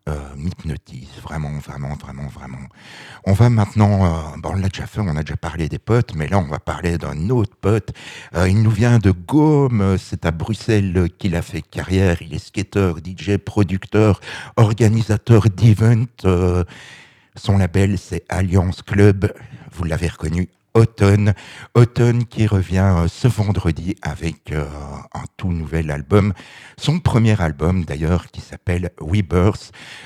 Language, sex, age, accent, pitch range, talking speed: French, male, 60-79, French, 85-105 Hz, 155 wpm